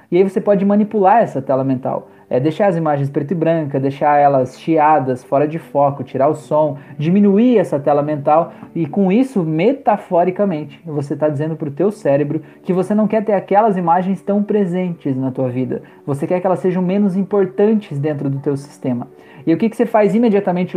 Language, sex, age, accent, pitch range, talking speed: Portuguese, male, 20-39, Brazilian, 150-195 Hz, 195 wpm